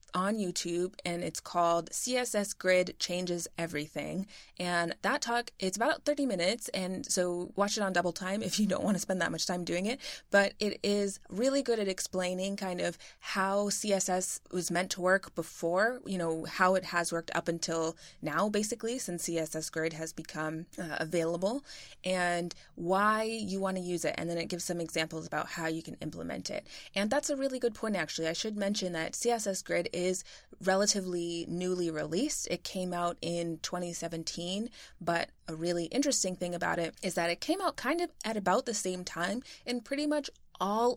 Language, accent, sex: English, American, female